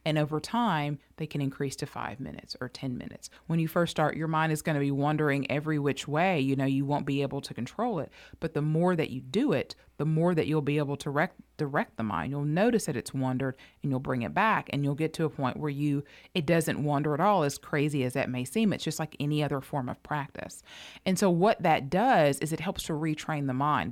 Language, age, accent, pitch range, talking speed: English, 30-49, American, 140-180 Hz, 255 wpm